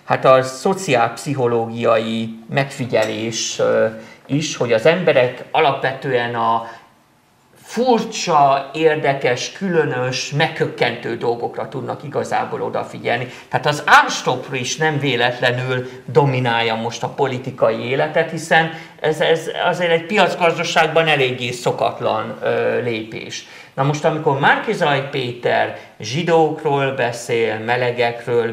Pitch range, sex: 120-160 Hz, male